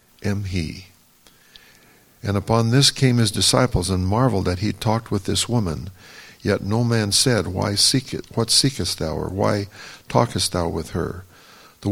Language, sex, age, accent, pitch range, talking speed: English, male, 50-69, American, 95-115 Hz, 165 wpm